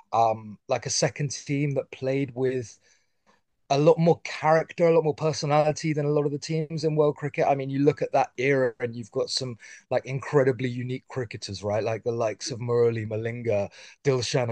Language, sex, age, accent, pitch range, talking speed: English, male, 30-49, British, 125-155 Hz, 200 wpm